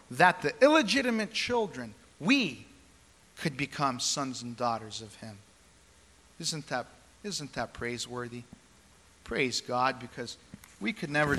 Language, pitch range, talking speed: English, 125-185 Hz, 120 wpm